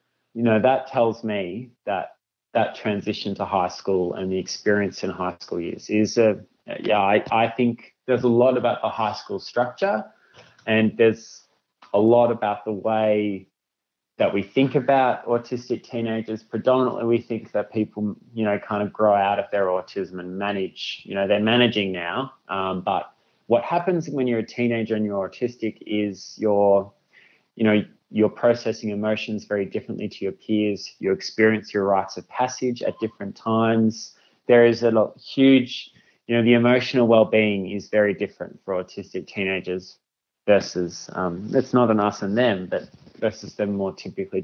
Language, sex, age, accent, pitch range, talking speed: English, male, 20-39, Australian, 100-120 Hz, 170 wpm